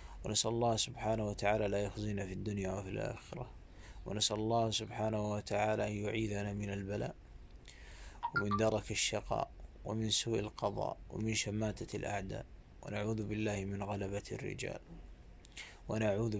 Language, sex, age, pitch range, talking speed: Arabic, male, 20-39, 100-110 Hz, 120 wpm